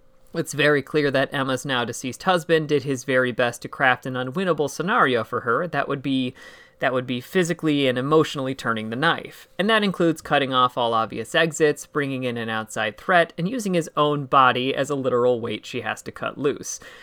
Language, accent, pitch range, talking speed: English, American, 125-160 Hz, 205 wpm